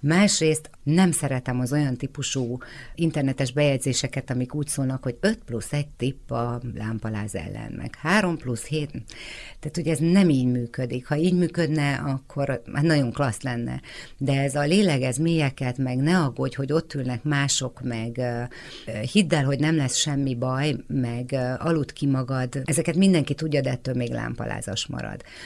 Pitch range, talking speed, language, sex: 130-155 Hz, 160 wpm, Hungarian, female